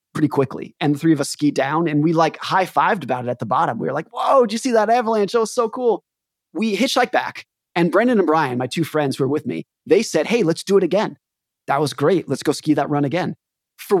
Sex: male